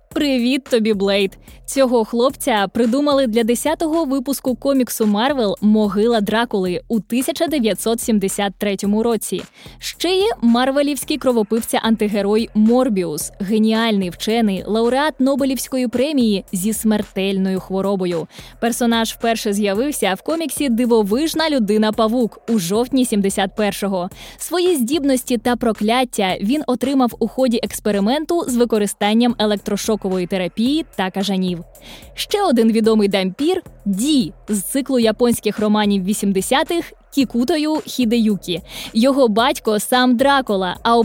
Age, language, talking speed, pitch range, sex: 20-39, Ukrainian, 105 wpm, 200-260 Hz, female